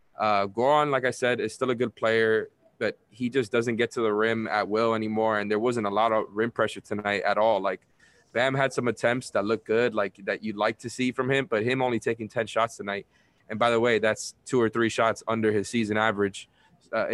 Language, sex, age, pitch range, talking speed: English, male, 20-39, 105-120 Hz, 240 wpm